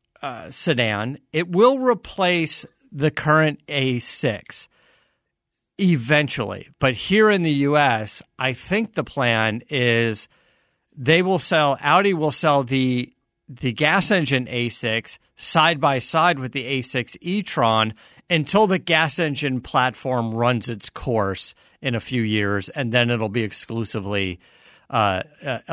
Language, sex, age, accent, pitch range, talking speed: English, male, 50-69, American, 120-165 Hz, 125 wpm